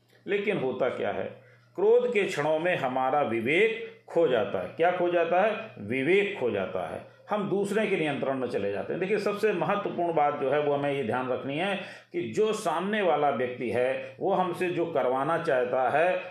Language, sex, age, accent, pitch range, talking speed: Hindi, male, 40-59, native, 130-185 Hz, 195 wpm